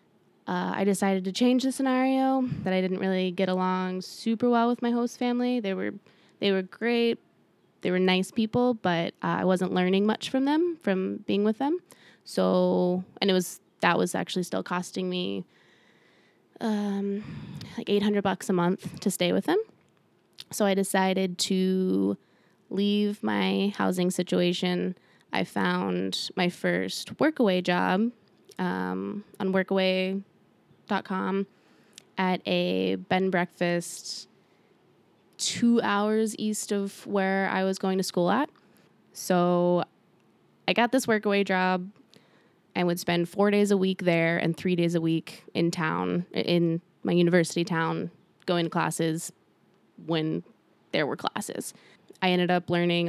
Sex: female